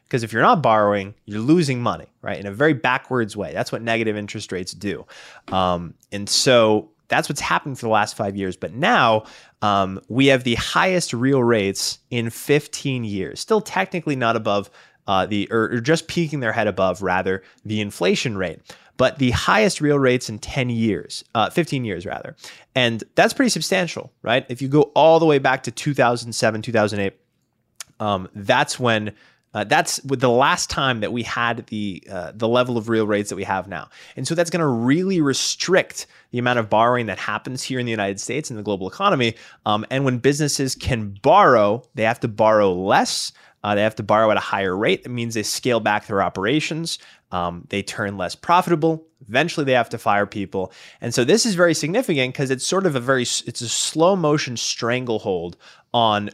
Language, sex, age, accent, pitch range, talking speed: English, male, 20-39, American, 105-135 Hz, 200 wpm